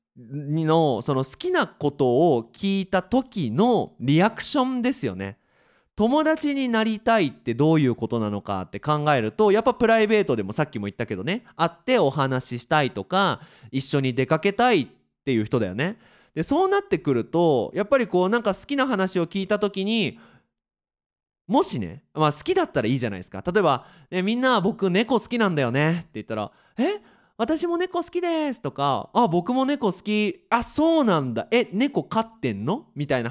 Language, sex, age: Japanese, male, 20-39